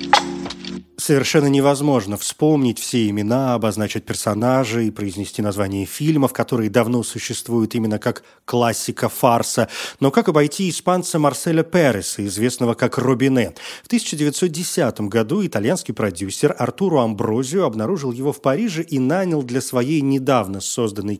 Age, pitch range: 30-49, 115-150 Hz